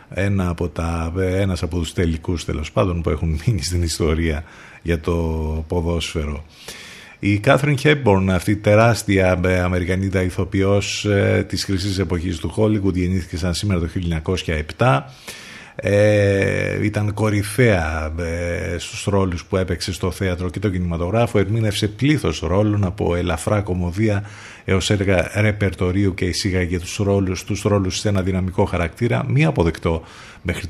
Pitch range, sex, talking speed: 85-105 Hz, male, 135 wpm